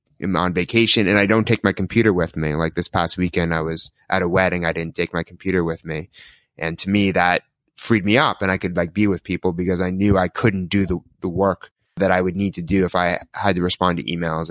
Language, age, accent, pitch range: English, 20-39, American, 95-110 Hz